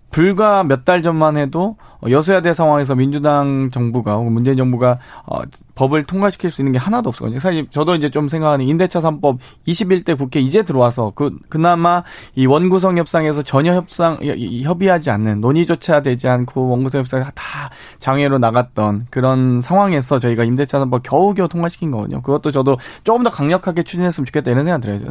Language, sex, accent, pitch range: Korean, male, native, 130-180 Hz